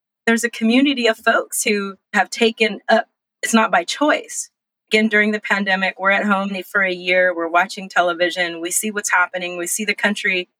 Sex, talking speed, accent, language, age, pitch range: female, 195 wpm, American, English, 30-49, 175-225 Hz